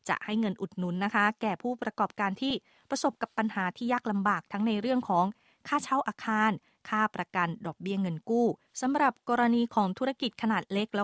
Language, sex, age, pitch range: Thai, female, 20-39, 190-235 Hz